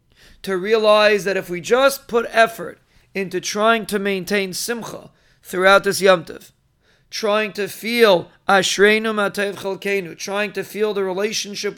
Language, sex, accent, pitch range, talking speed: English, male, American, 190-225 Hz, 130 wpm